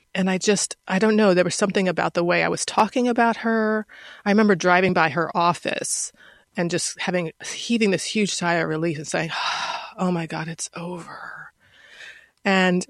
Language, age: English, 30-49